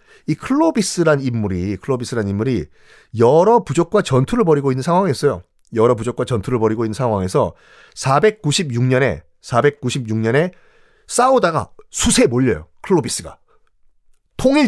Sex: male